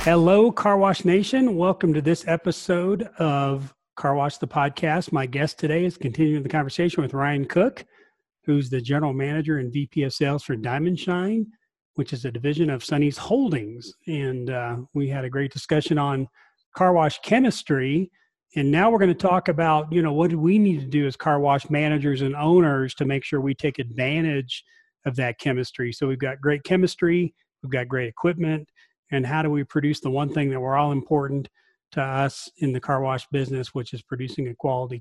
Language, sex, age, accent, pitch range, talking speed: English, male, 40-59, American, 135-165 Hz, 195 wpm